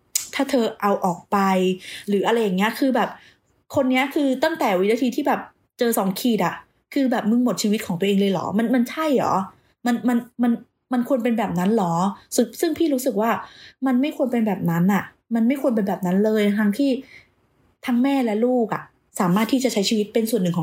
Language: Thai